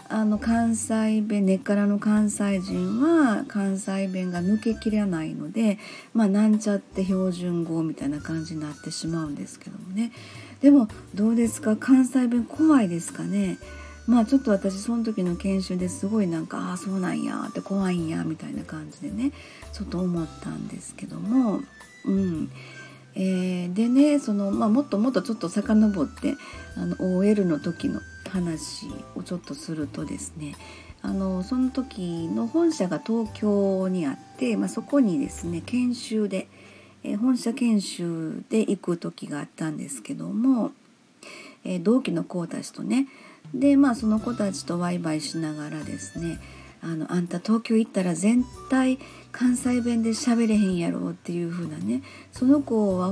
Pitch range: 175-235 Hz